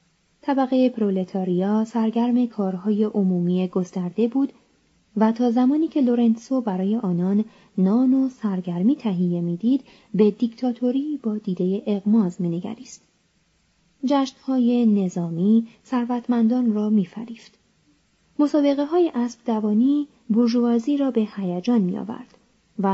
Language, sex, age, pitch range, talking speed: Persian, female, 30-49, 195-250 Hz, 100 wpm